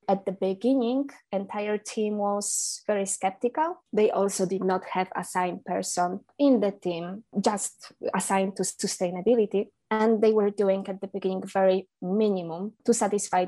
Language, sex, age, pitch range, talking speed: English, female, 20-39, 185-225 Hz, 145 wpm